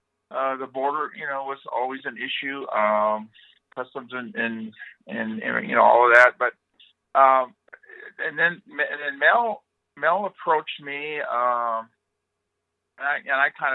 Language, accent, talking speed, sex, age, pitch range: English, American, 155 wpm, male, 50-69, 110-135 Hz